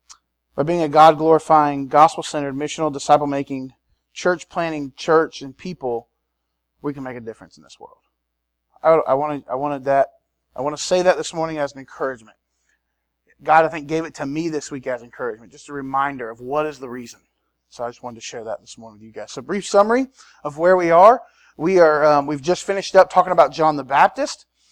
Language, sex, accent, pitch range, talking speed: English, male, American, 140-180 Hz, 200 wpm